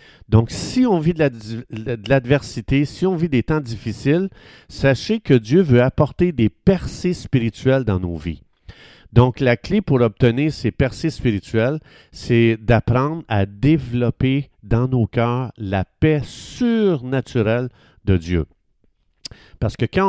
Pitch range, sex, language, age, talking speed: 105-145 Hz, male, French, 50-69, 140 wpm